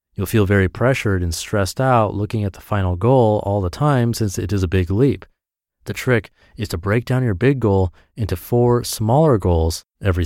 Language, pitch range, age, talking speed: English, 90-115 Hz, 30-49, 205 wpm